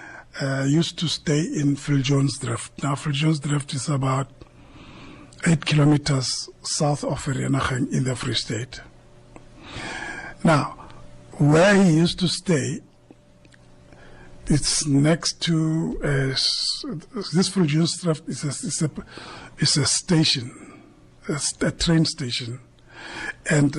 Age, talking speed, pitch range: 50-69, 125 wpm, 135-160 Hz